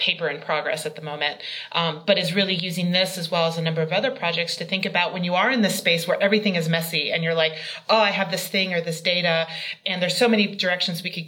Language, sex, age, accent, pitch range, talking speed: English, female, 30-49, American, 160-190 Hz, 270 wpm